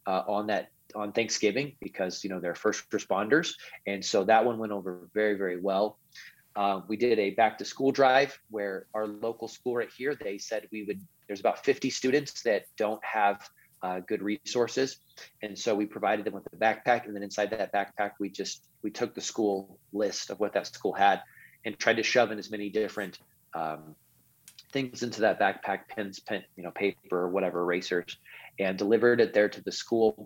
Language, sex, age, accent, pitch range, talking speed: English, male, 30-49, American, 95-120 Hz, 200 wpm